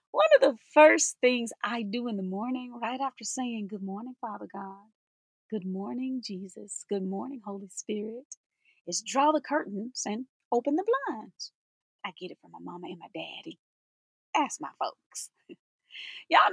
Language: English